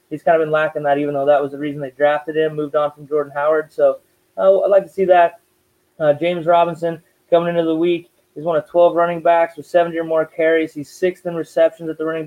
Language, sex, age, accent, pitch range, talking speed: English, male, 20-39, American, 145-170 Hz, 255 wpm